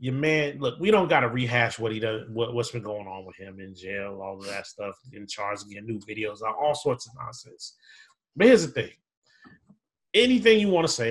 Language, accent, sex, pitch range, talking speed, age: English, American, male, 115-160 Hz, 225 wpm, 30-49